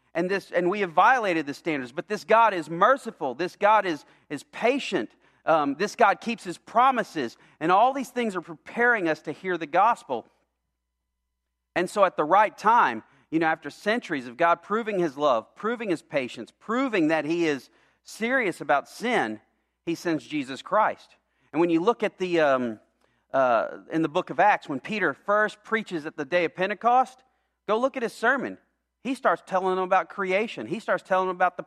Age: 40-59